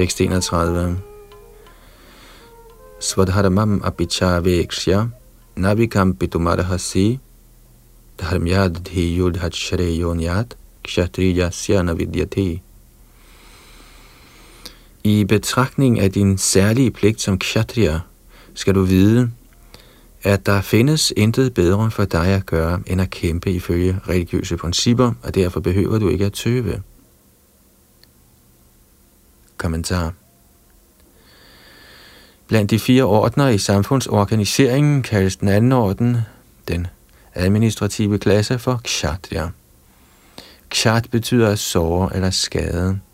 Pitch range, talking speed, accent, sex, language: 85-105 Hz, 110 wpm, native, male, Danish